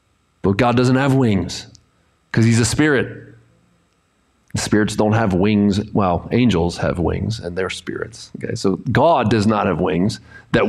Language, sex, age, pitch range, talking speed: English, male, 30-49, 105-145 Hz, 155 wpm